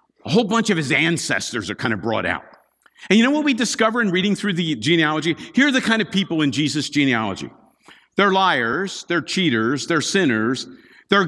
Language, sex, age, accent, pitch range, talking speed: English, male, 50-69, American, 170-250 Hz, 200 wpm